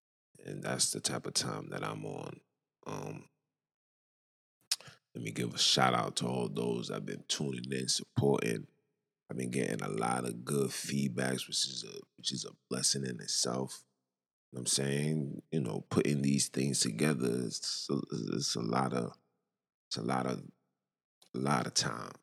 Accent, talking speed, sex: American, 180 wpm, male